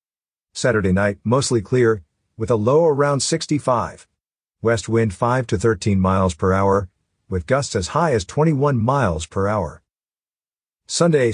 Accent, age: American, 50-69